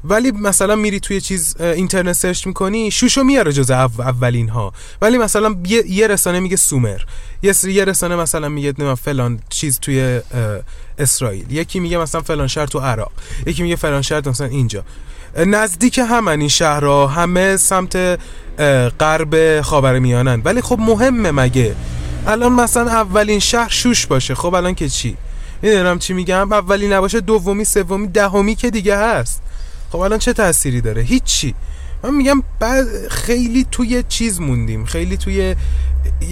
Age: 20-39